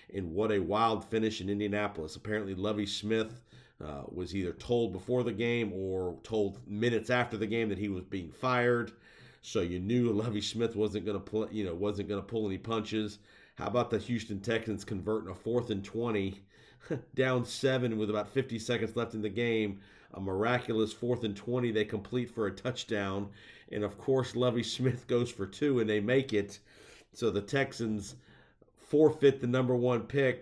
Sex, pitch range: male, 100-120 Hz